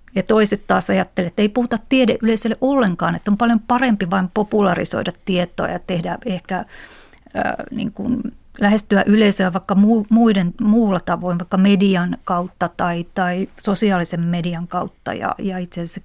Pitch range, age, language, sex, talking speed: 180-220 Hz, 30-49, Finnish, female, 145 wpm